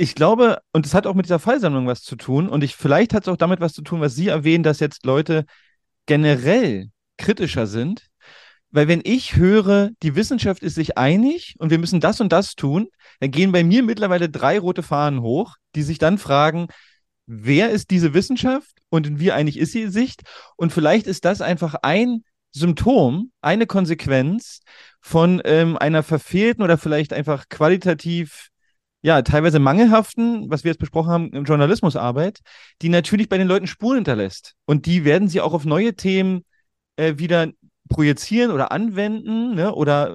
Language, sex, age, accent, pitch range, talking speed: German, male, 30-49, German, 155-200 Hz, 180 wpm